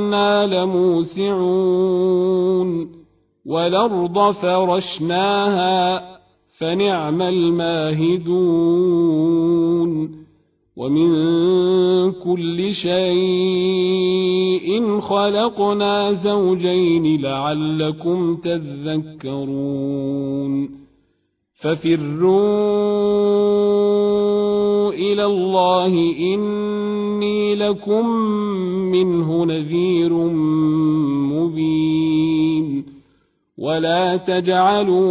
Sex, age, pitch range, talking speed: male, 40-59, 165-190 Hz, 40 wpm